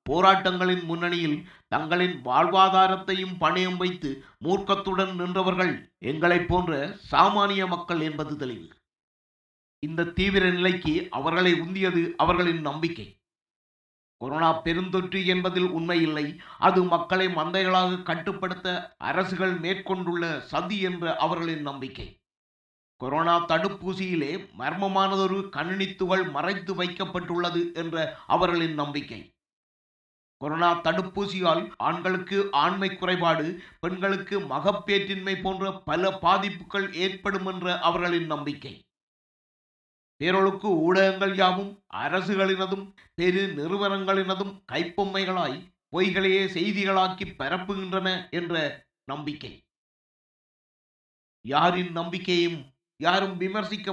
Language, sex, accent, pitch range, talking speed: Tamil, male, native, 165-190 Hz, 80 wpm